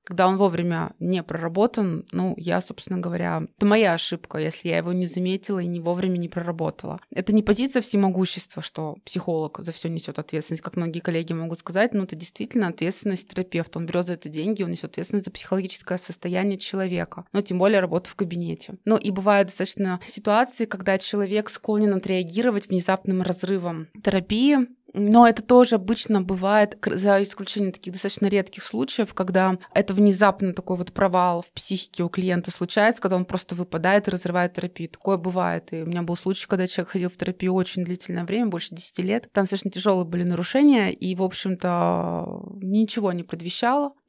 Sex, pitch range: female, 175-205 Hz